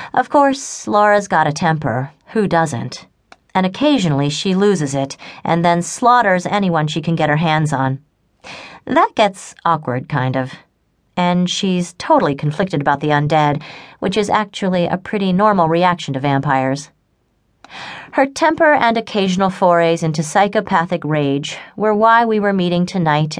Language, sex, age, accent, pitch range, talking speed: English, female, 40-59, American, 150-200 Hz, 150 wpm